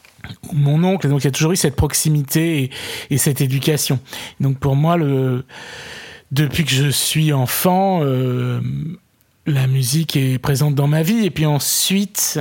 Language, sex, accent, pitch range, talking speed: French, male, French, 130-150 Hz, 155 wpm